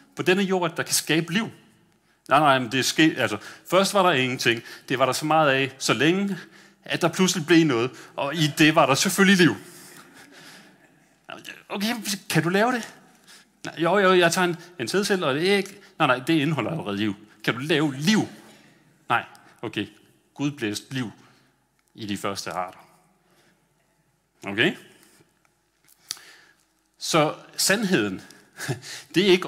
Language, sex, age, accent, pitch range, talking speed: Danish, male, 30-49, native, 130-175 Hz, 165 wpm